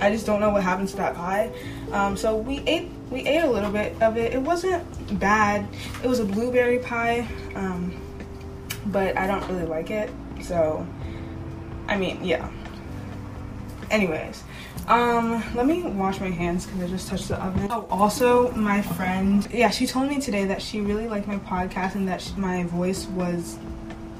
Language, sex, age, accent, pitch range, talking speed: English, female, 20-39, American, 175-230 Hz, 180 wpm